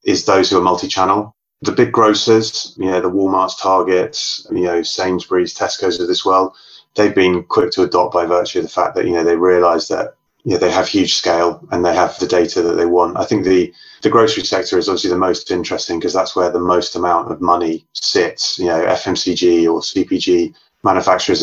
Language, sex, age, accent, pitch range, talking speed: English, male, 30-49, British, 85-100 Hz, 215 wpm